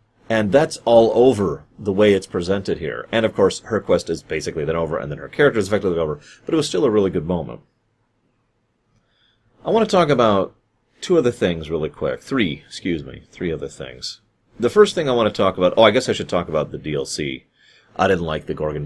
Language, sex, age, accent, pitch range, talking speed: English, male, 30-49, American, 90-130 Hz, 225 wpm